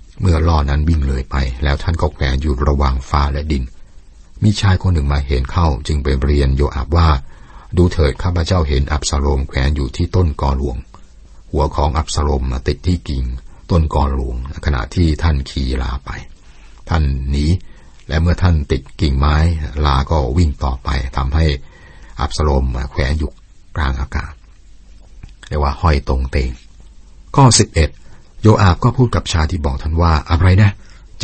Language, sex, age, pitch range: Thai, male, 60-79, 70-85 Hz